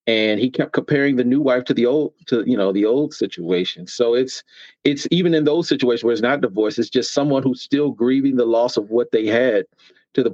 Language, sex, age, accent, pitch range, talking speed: English, male, 40-59, American, 120-150 Hz, 240 wpm